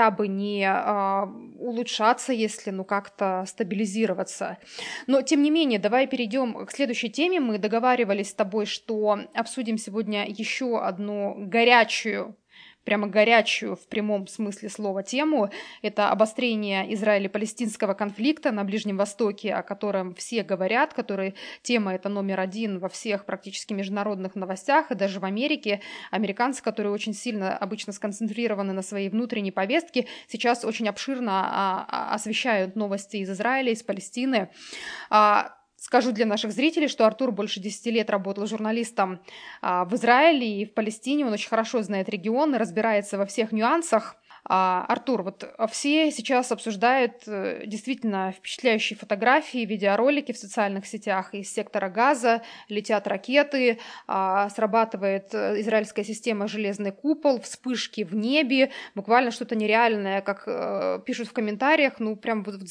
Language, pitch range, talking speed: Russian, 200-245 Hz, 130 wpm